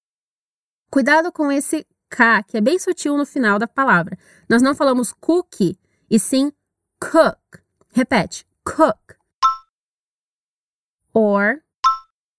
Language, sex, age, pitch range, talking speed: Portuguese, female, 20-39, 220-305 Hz, 105 wpm